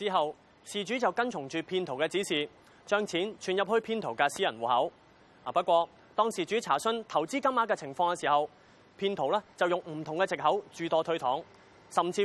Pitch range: 145-210 Hz